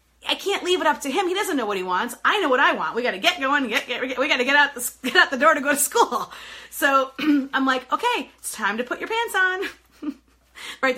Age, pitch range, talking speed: 30-49, 205-290 Hz, 260 wpm